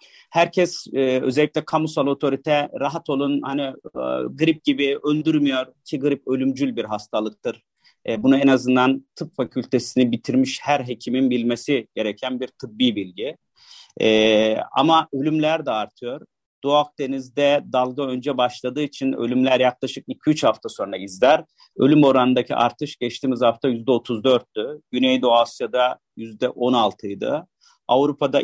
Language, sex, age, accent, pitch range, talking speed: Turkish, male, 40-59, native, 125-145 Hz, 115 wpm